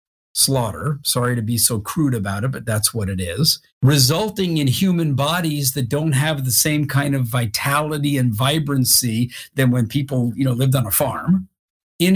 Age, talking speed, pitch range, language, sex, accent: 50-69, 185 wpm, 130-165 Hz, English, male, American